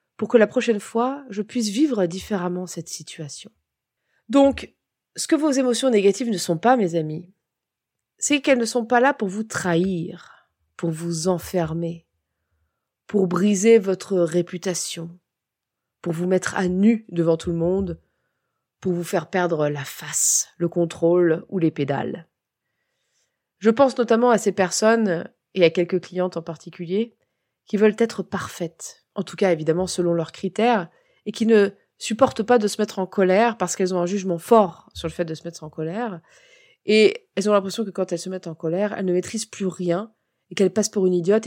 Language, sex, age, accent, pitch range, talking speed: French, female, 20-39, French, 170-215 Hz, 185 wpm